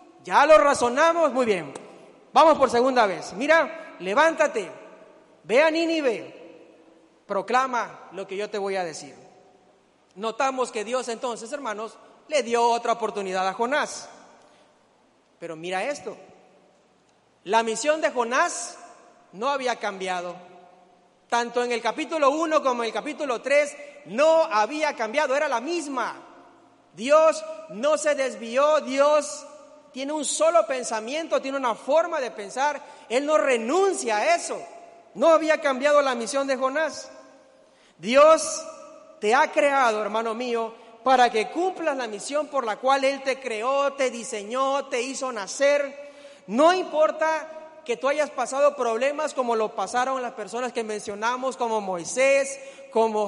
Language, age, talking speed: Spanish, 40-59, 140 wpm